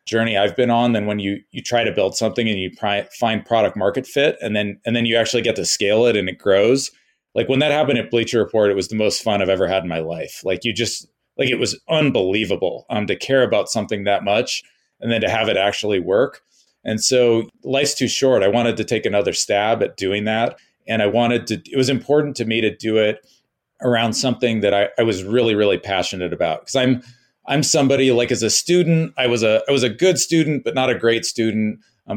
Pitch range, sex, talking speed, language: 105-125 Hz, male, 240 wpm, English